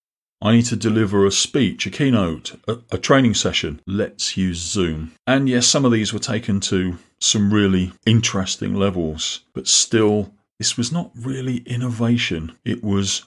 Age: 40-59